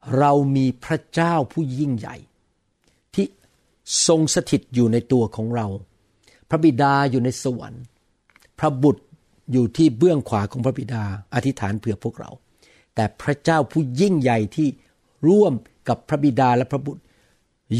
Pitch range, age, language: 120-160 Hz, 60-79, Thai